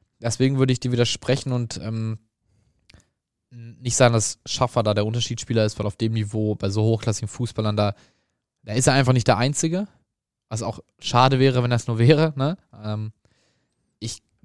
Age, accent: 20-39, German